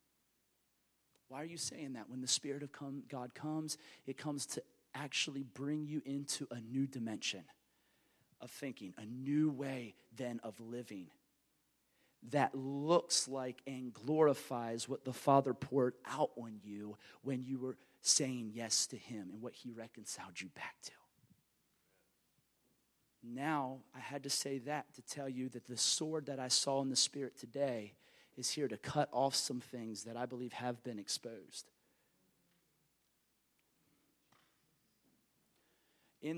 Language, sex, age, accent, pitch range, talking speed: English, male, 30-49, American, 125-150 Hz, 145 wpm